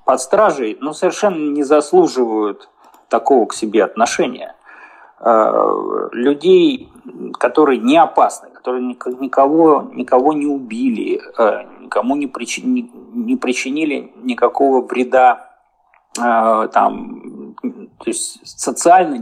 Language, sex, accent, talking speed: Russian, male, native, 80 wpm